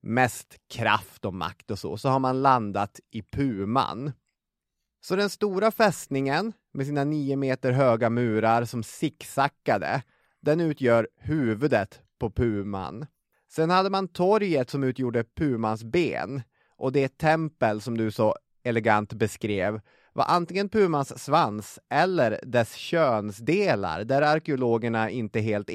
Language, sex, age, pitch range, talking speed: English, male, 30-49, 110-145 Hz, 135 wpm